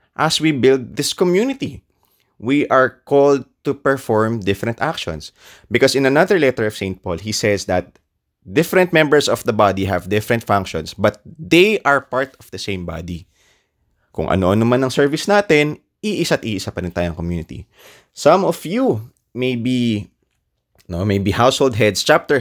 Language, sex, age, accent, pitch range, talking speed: English, male, 20-39, Filipino, 95-145 Hz, 155 wpm